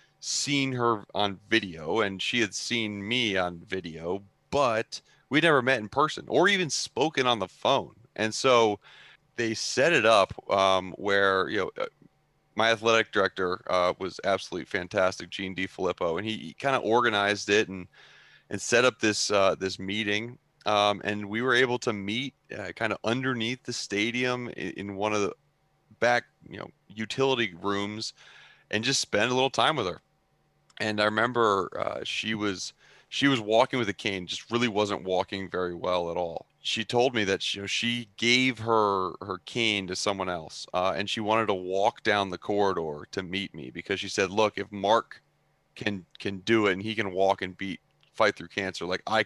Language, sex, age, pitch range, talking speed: English, male, 30-49, 95-115 Hz, 190 wpm